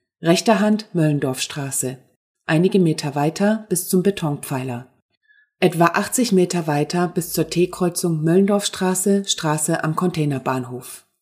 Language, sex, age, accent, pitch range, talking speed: German, female, 30-49, German, 145-185 Hz, 105 wpm